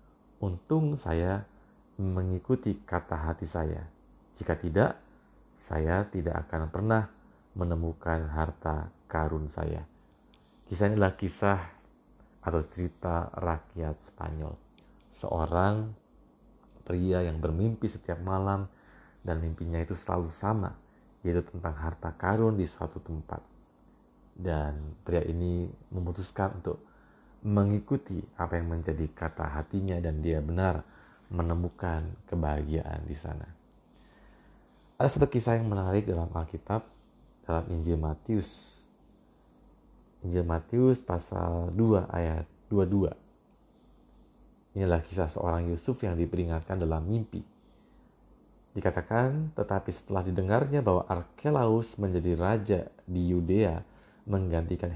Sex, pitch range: male, 80-100 Hz